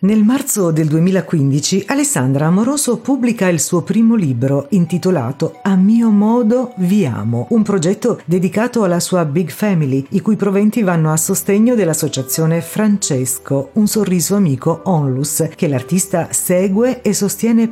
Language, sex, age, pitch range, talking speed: Italian, female, 50-69, 155-210 Hz, 140 wpm